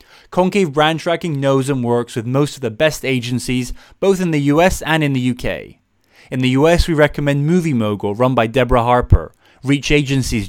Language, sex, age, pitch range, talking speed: English, male, 20-39, 120-160 Hz, 190 wpm